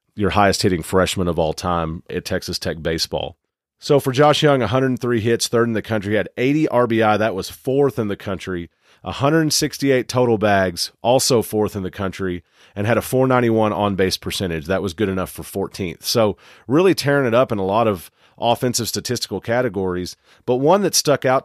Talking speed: 185 wpm